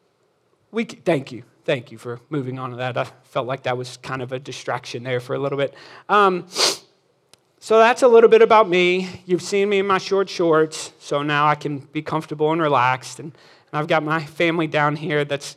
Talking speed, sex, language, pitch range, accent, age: 215 wpm, male, English, 155-205 Hz, American, 40-59